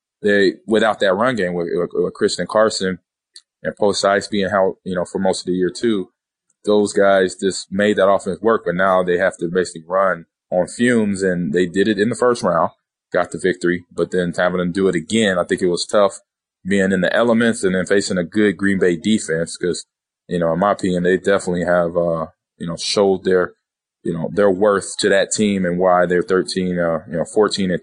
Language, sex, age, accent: English, male, 20-39, American